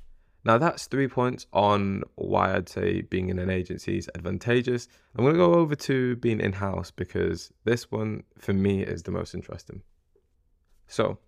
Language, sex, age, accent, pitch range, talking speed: English, male, 20-39, British, 90-110 Hz, 170 wpm